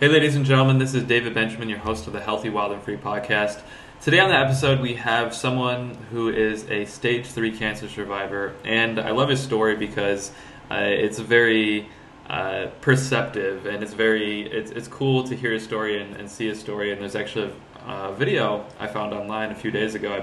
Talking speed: 210 wpm